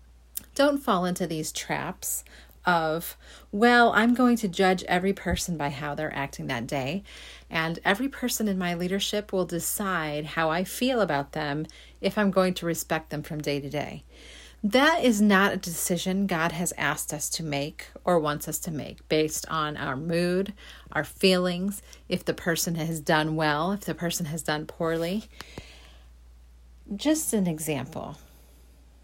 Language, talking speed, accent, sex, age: English, 165 wpm, American, female, 40-59